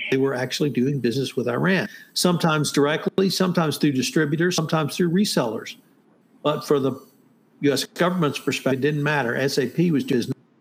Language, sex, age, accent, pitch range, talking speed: English, male, 60-79, American, 135-180 Hz, 155 wpm